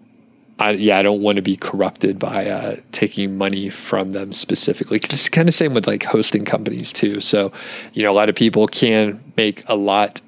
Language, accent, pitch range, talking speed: English, American, 100-125 Hz, 200 wpm